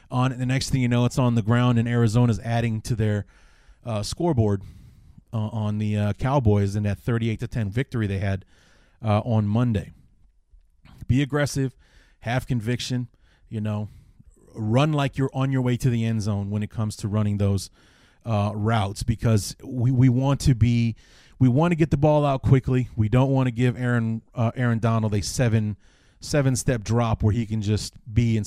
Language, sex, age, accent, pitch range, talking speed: English, male, 30-49, American, 105-125 Hz, 190 wpm